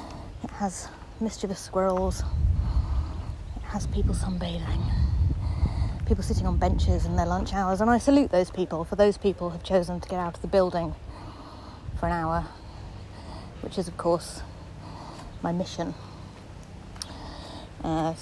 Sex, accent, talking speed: female, British, 135 wpm